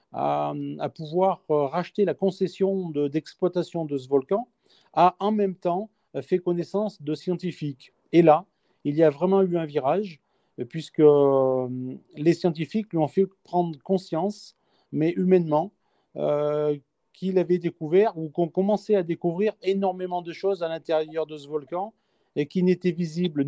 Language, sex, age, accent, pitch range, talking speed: French, male, 40-59, French, 155-180 Hz, 150 wpm